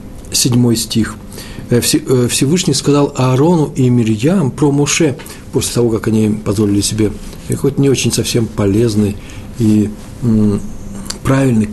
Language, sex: Russian, male